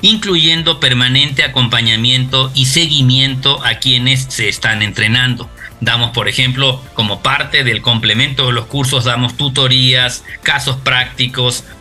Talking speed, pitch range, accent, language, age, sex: 120 wpm, 120-135 Hz, Mexican, Spanish, 50-69, male